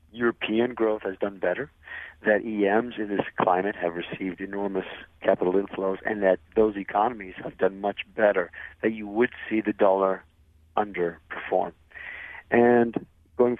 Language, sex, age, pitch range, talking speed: English, male, 40-59, 85-105 Hz, 140 wpm